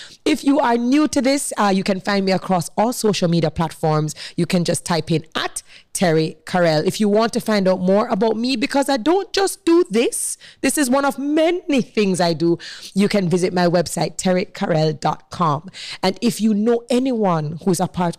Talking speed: 200 wpm